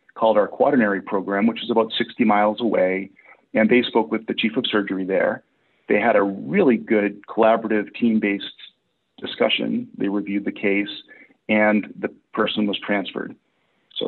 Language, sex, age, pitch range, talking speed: English, male, 40-59, 100-115 Hz, 160 wpm